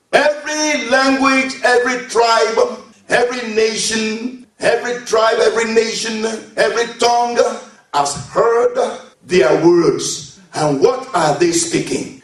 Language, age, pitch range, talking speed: English, 50-69, 225-375 Hz, 105 wpm